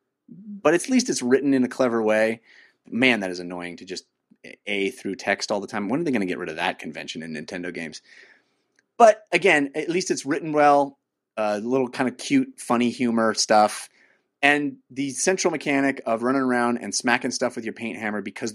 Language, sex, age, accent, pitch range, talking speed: English, male, 30-49, American, 115-165 Hz, 205 wpm